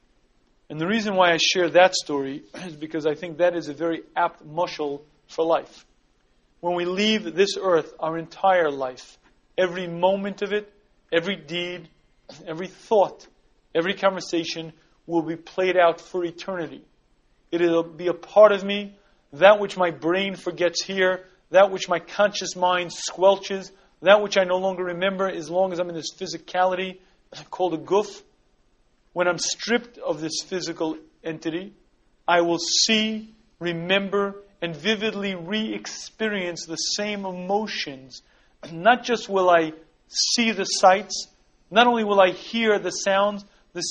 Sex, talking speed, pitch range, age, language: male, 150 wpm, 165-195 Hz, 40-59, English